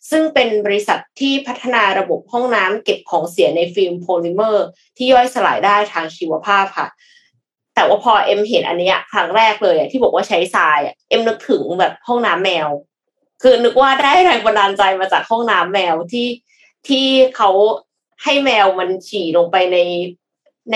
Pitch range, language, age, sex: 180-250 Hz, Thai, 20-39, female